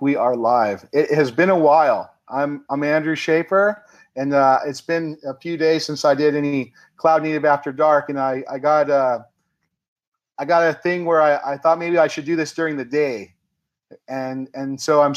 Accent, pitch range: American, 135-160 Hz